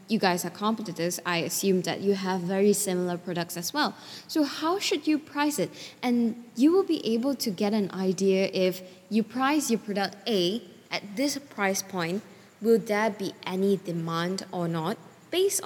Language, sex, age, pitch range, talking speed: English, female, 10-29, 180-245 Hz, 180 wpm